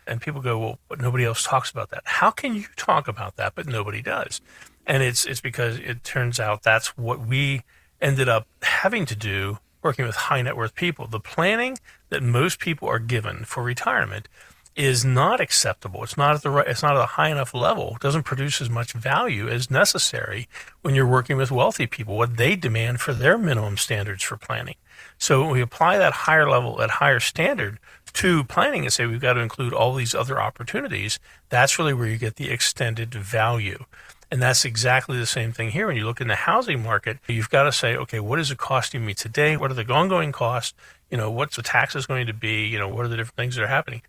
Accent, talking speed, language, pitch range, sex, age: American, 225 wpm, English, 115-140 Hz, male, 50-69